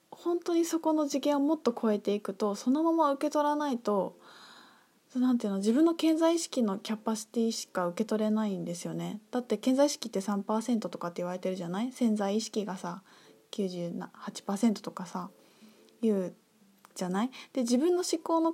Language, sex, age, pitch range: Japanese, female, 20-39, 195-255 Hz